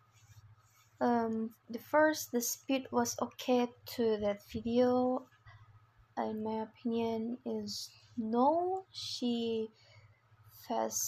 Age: 20-39